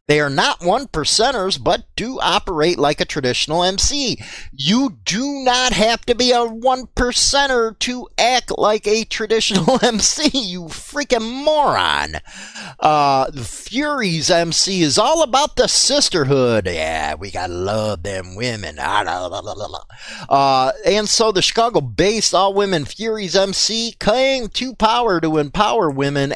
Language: English